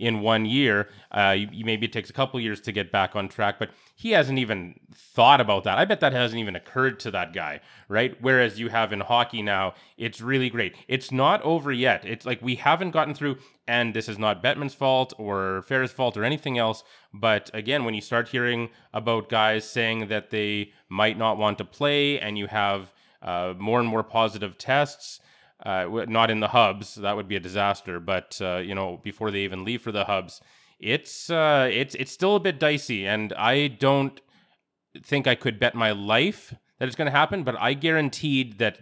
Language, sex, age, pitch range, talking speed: English, male, 20-39, 105-130 Hz, 210 wpm